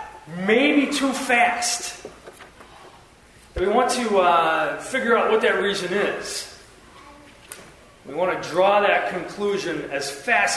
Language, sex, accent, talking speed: English, male, American, 120 wpm